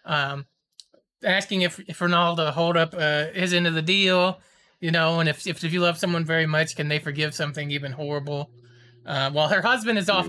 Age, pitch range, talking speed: 20-39, 150-205 Hz, 215 wpm